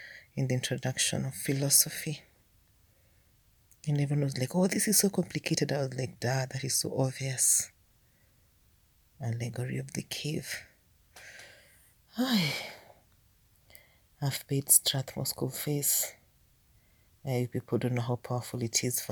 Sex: female